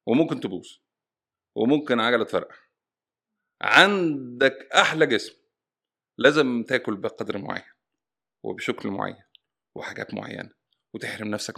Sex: male